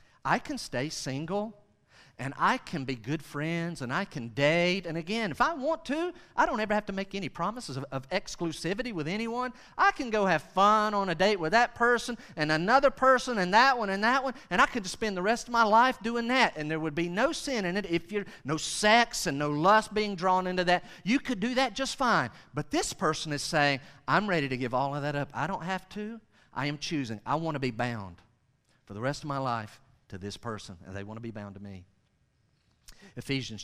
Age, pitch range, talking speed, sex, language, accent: 40-59, 125-195 Hz, 235 wpm, male, English, American